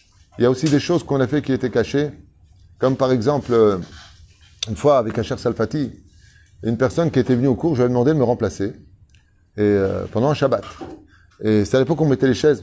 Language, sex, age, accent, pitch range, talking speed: French, male, 30-49, French, 100-145 Hz, 225 wpm